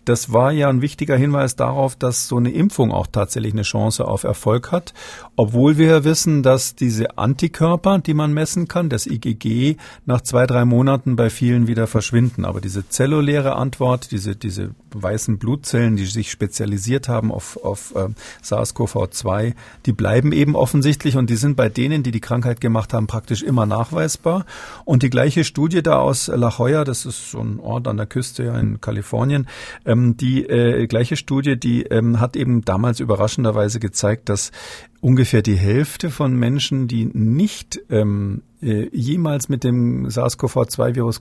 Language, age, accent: German, 40-59, German